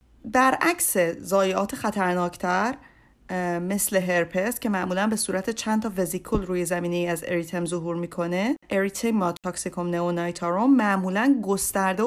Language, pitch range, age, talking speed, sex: Persian, 180-240 Hz, 30-49, 130 wpm, female